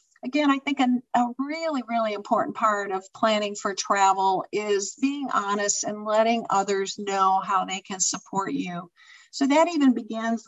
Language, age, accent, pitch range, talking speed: English, 50-69, American, 205-245 Hz, 165 wpm